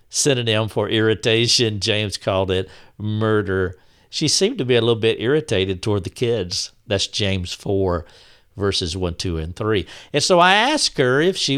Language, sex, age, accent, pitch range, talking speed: English, male, 60-79, American, 100-140 Hz, 170 wpm